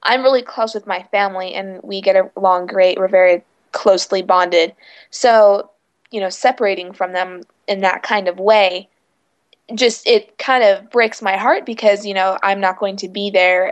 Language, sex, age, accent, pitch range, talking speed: English, female, 20-39, American, 190-220 Hz, 185 wpm